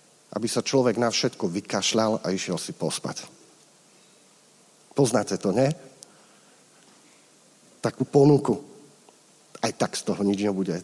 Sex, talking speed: male, 115 wpm